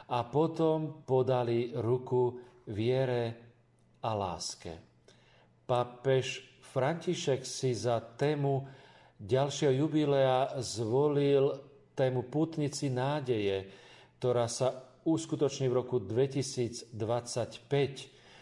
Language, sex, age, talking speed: Slovak, male, 50-69, 80 wpm